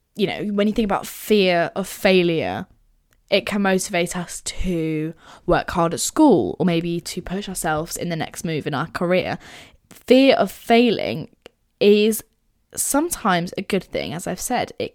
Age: 10-29